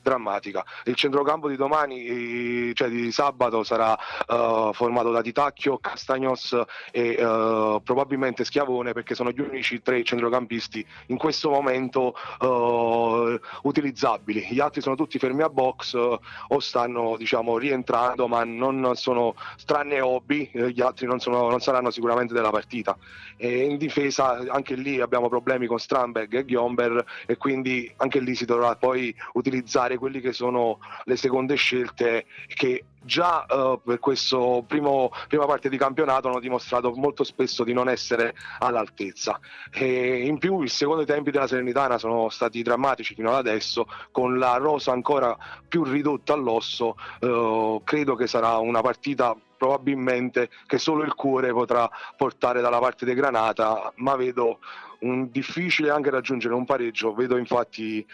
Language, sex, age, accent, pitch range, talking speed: Italian, male, 30-49, native, 120-135 Hz, 145 wpm